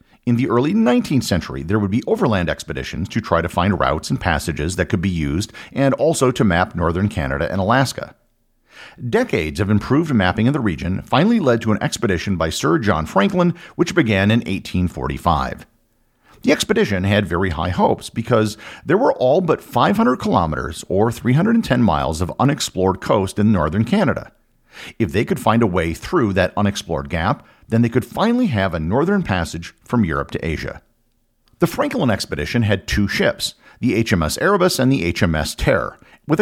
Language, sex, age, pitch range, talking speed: English, male, 50-69, 85-120 Hz, 175 wpm